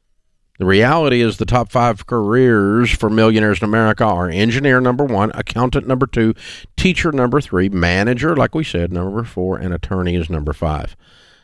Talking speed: 170 wpm